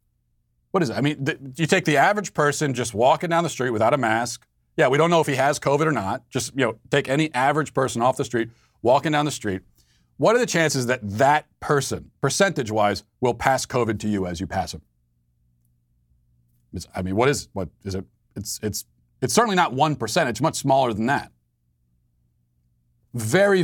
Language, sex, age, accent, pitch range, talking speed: English, male, 40-59, American, 100-145 Hz, 205 wpm